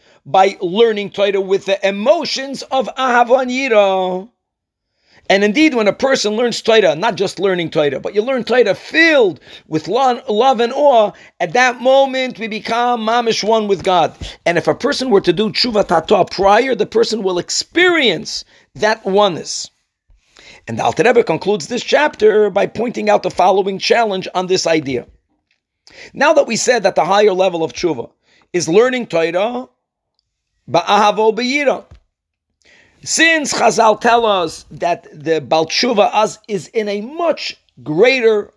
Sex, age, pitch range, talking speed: male, 50-69, 190-245 Hz, 145 wpm